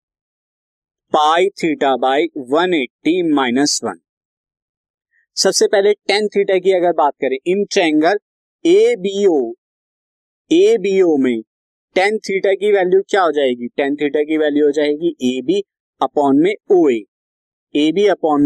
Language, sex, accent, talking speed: Hindi, male, native, 120 wpm